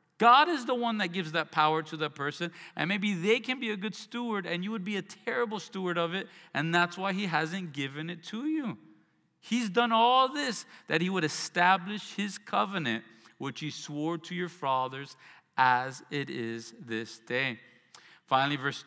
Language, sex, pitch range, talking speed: English, male, 115-170 Hz, 190 wpm